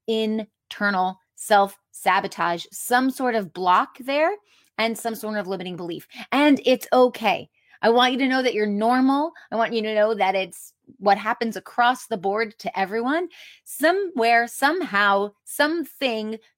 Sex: female